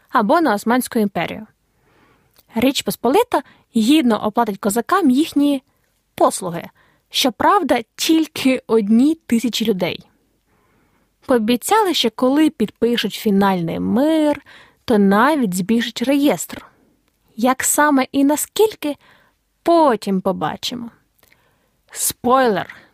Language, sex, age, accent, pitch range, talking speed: Ukrainian, female, 20-39, native, 215-295 Hz, 85 wpm